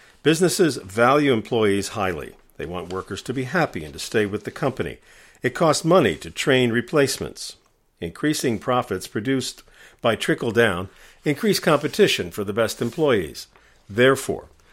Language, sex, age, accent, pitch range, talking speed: English, male, 50-69, American, 105-140 Hz, 140 wpm